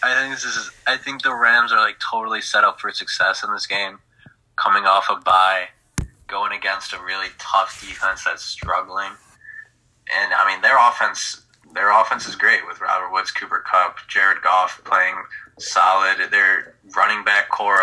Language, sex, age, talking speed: English, male, 20-39, 175 wpm